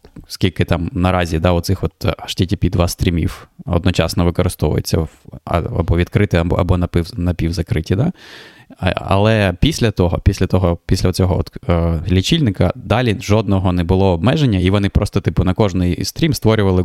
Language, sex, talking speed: Ukrainian, male, 135 wpm